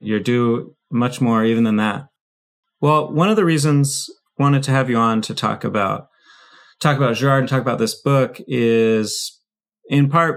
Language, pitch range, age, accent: English, 105-140 Hz, 30-49, American